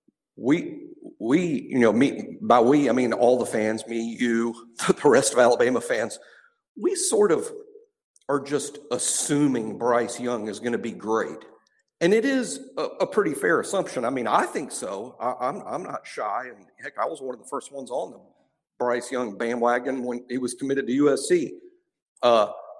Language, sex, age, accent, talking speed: English, male, 50-69, American, 185 wpm